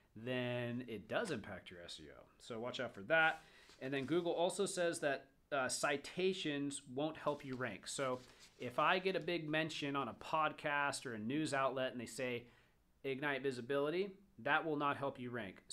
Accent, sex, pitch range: American, male, 135-180 Hz